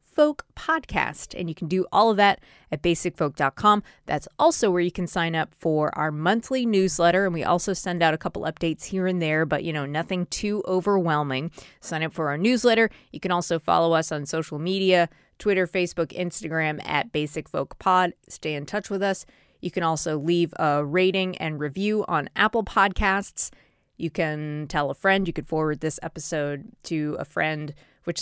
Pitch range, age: 150-195 Hz, 20-39